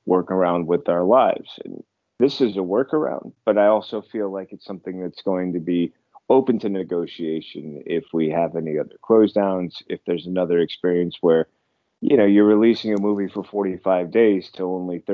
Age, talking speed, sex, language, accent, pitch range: 30-49, 185 wpm, male, English, American, 90-115 Hz